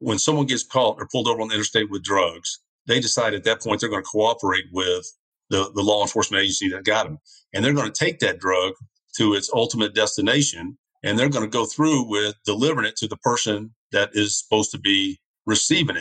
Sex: male